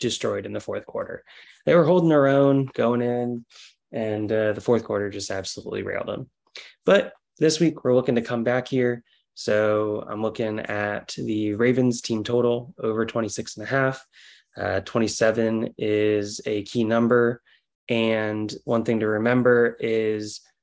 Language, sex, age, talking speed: English, male, 20-39, 160 wpm